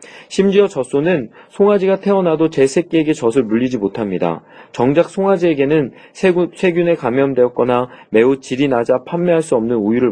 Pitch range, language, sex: 125-170 Hz, Korean, male